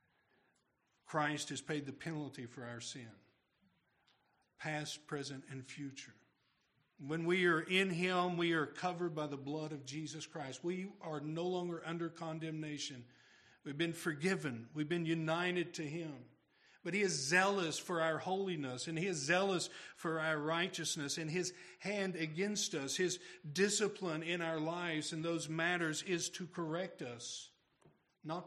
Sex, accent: male, American